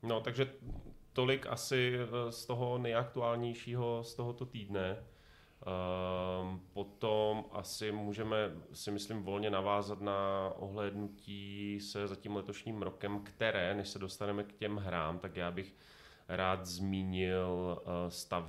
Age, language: 30-49, Czech